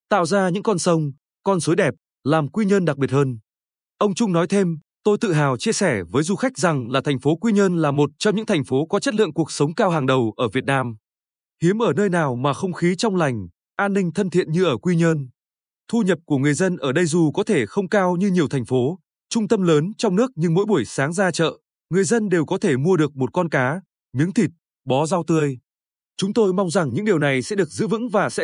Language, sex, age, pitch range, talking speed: Vietnamese, male, 20-39, 140-195 Hz, 255 wpm